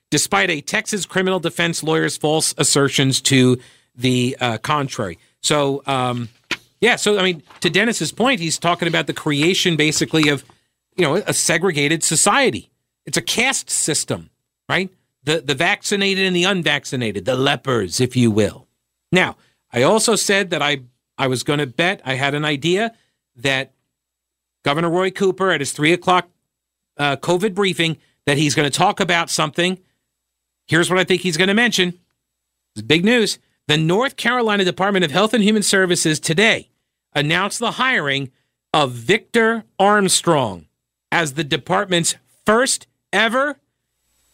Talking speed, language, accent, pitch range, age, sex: 155 wpm, English, American, 140-200 Hz, 50-69, male